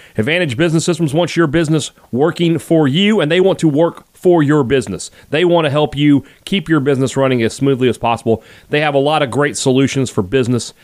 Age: 40-59